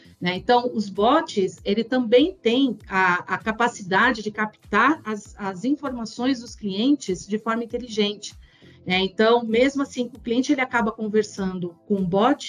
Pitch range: 205-255 Hz